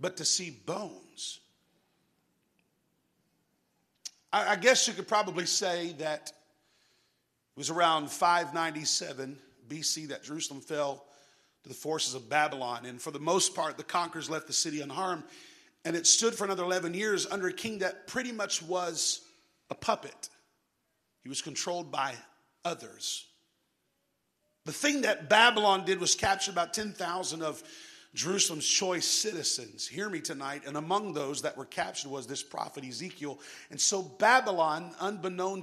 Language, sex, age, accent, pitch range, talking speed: English, male, 50-69, American, 150-195 Hz, 145 wpm